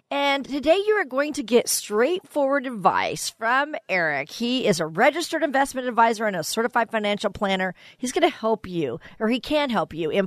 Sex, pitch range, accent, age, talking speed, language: female, 185-260 Hz, American, 40-59, 195 wpm, English